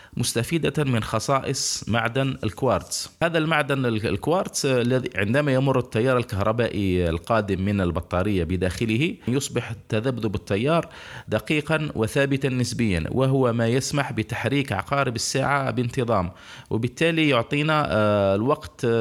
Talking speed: 105 wpm